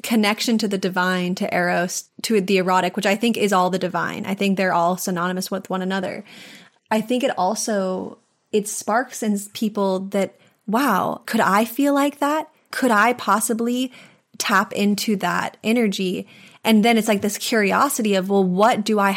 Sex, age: female, 20-39